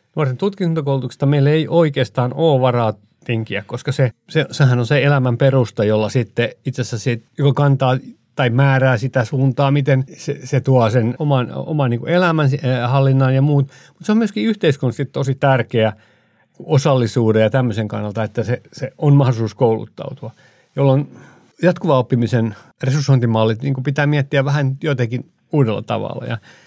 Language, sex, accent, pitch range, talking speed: Finnish, male, native, 120-145 Hz, 150 wpm